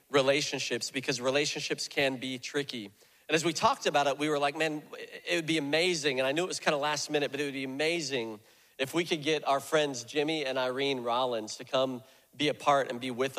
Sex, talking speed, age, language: male, 235 wpm, 40-59, English